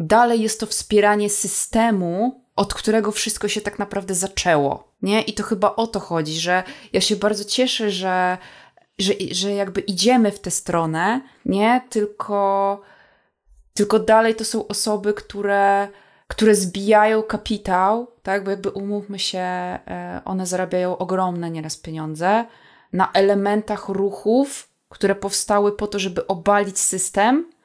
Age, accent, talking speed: 20-39, native, 135 wpm